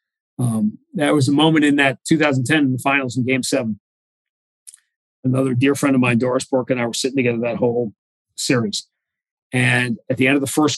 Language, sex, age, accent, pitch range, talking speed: English, male, 40-59, American, 120-145 Hz, 200 wpm